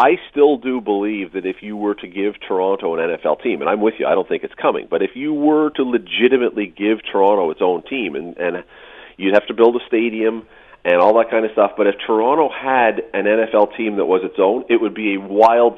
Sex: male